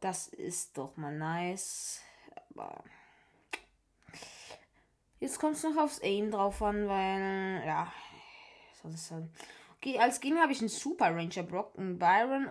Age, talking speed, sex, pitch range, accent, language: 20-39, 145 wpm, female, 190-275 Hz, German, German